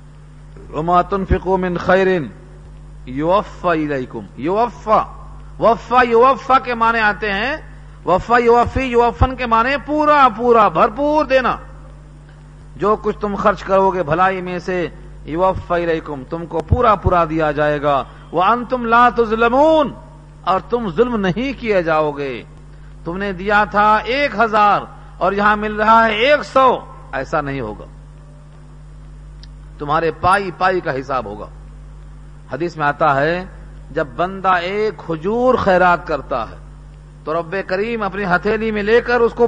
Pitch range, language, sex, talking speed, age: 150-215 Hz, Urdu, male, 140 wpm, 50-69